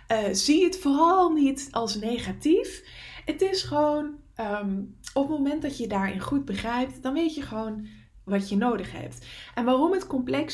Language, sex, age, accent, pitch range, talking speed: English, female, 20-39, Dutch, 200-275 Hz, 170 wpm